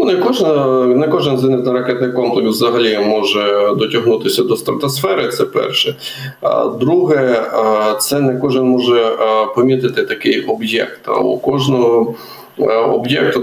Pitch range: 115-130 Hz